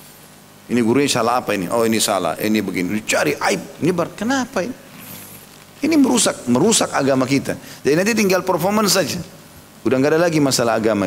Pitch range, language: 105-165 Hz, Indonesian